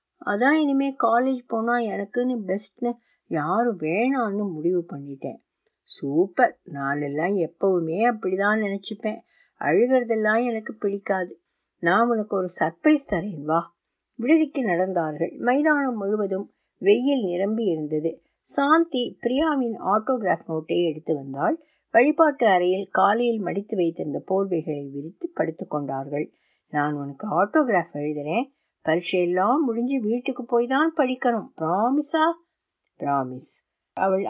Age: 50-69